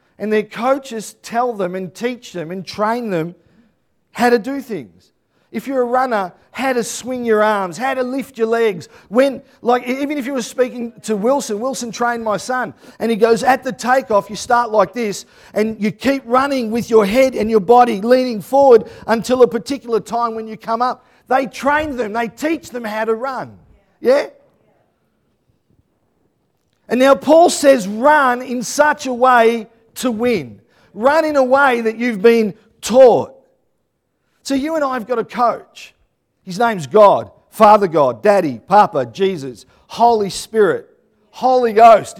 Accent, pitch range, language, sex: Australian, 215-265 Hz, English, male